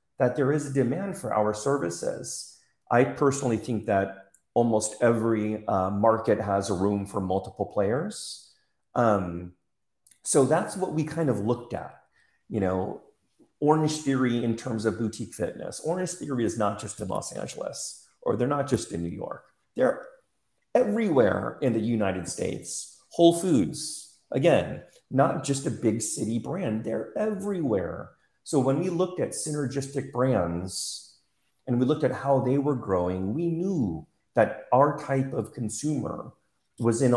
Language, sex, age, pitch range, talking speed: English, male, 40-59, 100-140 Hz, 155 wpm